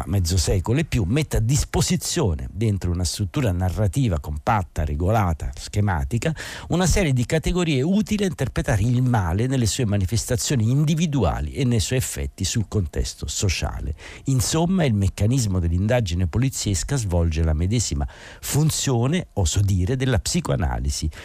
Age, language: 50-69, Italian